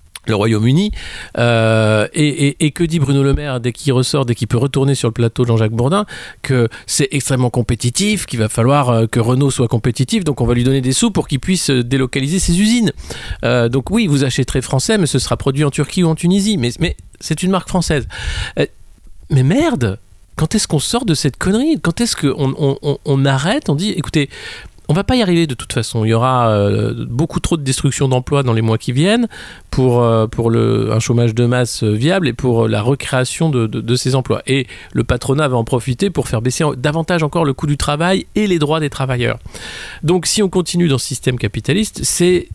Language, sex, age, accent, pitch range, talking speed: French, male, 50-69, French, 115-155 Hz, 225 wpm